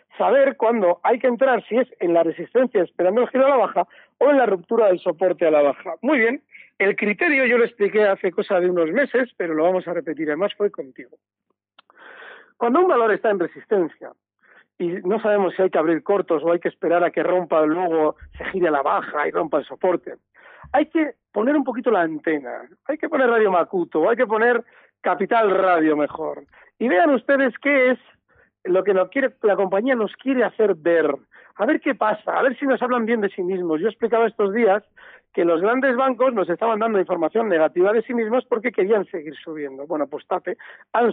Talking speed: 215 wpm